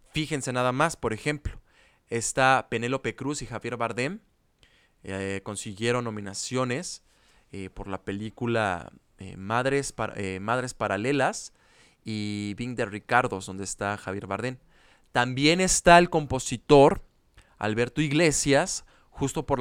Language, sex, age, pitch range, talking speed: Spanish, male, 20-39, 110-140 Hz, 120 wpm